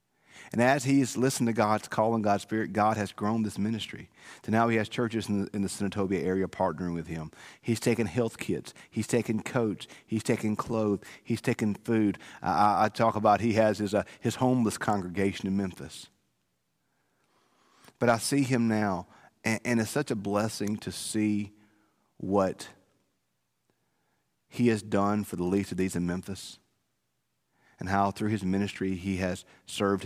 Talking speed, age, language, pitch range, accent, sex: 175 wpm, 40-59, English, 95-110 Hz, American, male